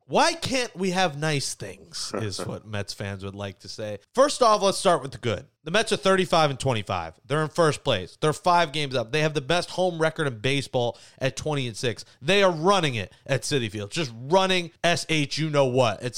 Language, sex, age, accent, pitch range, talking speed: English, male, 30-49, American, 135-180 Hz, 225 wpm